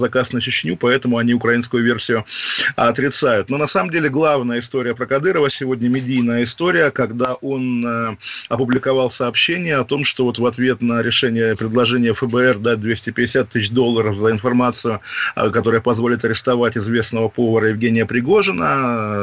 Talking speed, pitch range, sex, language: 145 wpm, 115-130 Hz, male, Russian